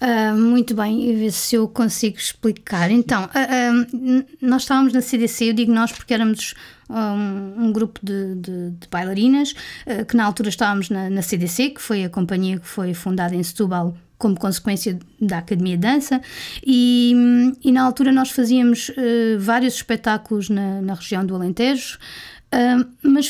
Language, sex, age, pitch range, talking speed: Portuguese, female, 20-39, 210-255 Hz, 155 wpm